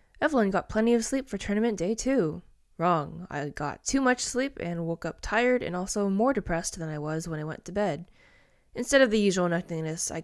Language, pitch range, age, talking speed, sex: English, 165-220 Hz, 20-39, 215 wpm, female